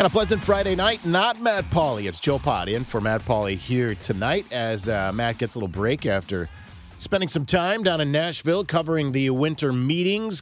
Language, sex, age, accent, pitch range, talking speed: English, male, 40-59, American, 100-130 Hz, 200 wpm